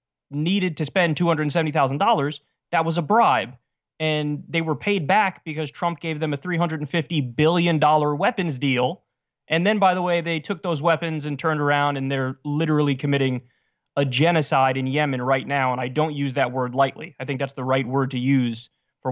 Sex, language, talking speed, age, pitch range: male, English, 190 wpm, 20-39, 135-175 Hz